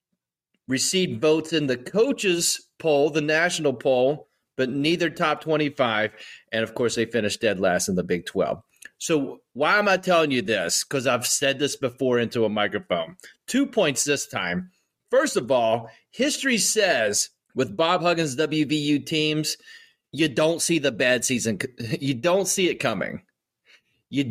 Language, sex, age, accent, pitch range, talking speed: English, male, 30-49, American, 130-165 Hz, 160 wpm